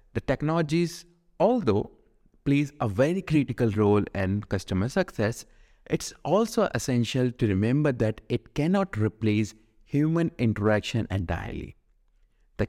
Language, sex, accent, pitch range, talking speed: English, male, Indian, 95-130 Hz, 115 wpm